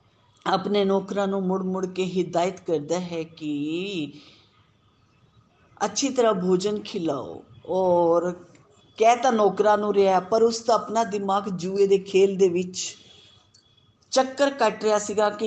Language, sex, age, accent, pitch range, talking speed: Hindi, female, 50-69, native, 160-210 Hz, 100 wpm